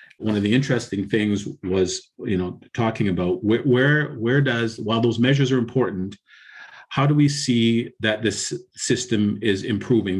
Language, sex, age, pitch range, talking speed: English, male, 40-59, 105-130 Hz, 160 wpm